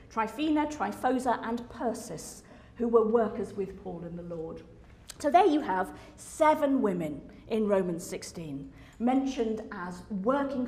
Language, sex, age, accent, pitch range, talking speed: English, female, 40-59, British, 195-240 Hz, 135 wpm